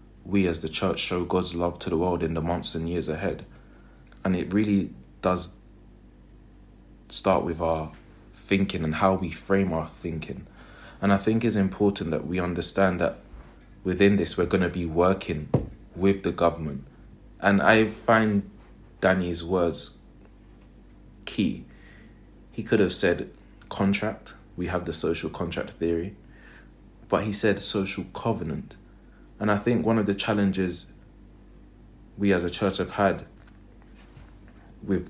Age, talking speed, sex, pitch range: 20-39, 145 wpm, male, 85-100 Hz